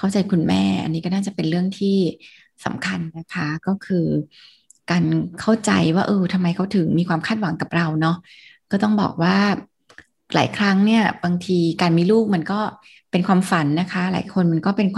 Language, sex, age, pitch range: Thai, female, 20-39, 175-215 Hz